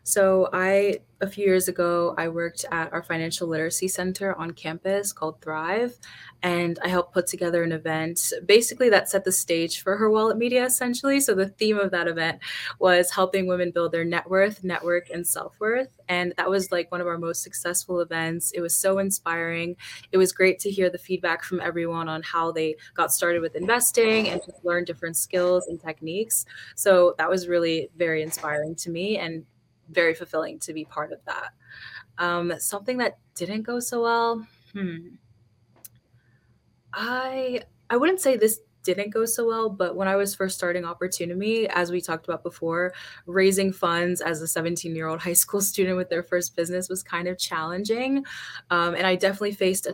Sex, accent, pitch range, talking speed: female, American, 170-195 Hz, 185 wpm